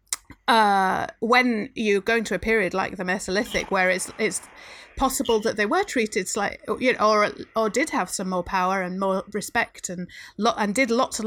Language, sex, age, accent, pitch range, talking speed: English, female, 30-49, British, 205-260 Hz, 195 wpm